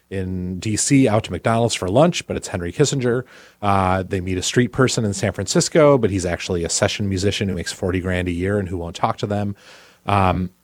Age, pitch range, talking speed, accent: 30-49, 85-105 Hz, 220 wpm, American